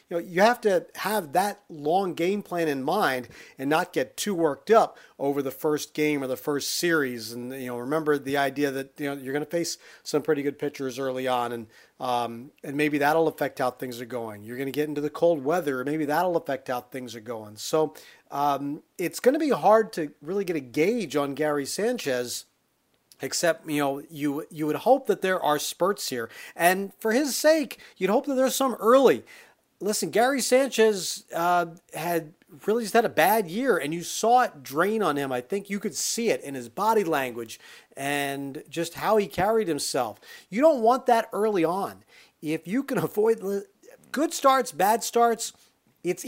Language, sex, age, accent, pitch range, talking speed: English, male, 40-59, American, 145-215 Hz, 200 wpm